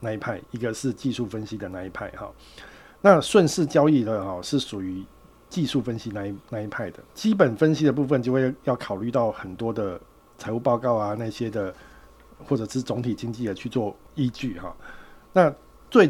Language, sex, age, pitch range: Chinese, male, 50-69, 105-145 Hz